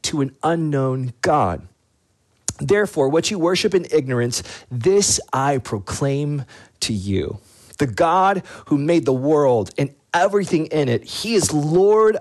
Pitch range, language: 110-170 Hz, English